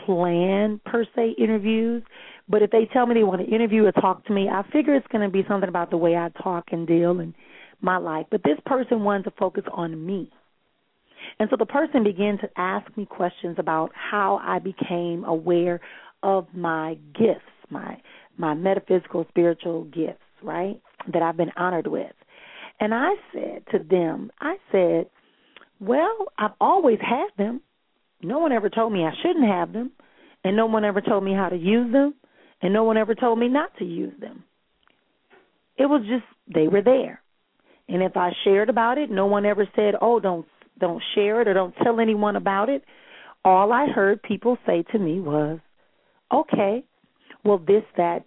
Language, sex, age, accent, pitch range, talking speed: English, female, 40-59, American, 175-235 Hz, 185 wpm